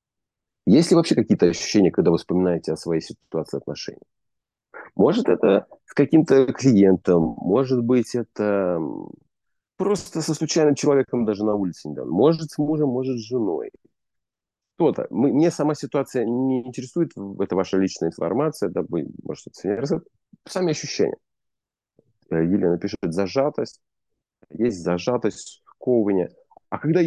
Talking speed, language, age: 135 wpm, Russian, 30-49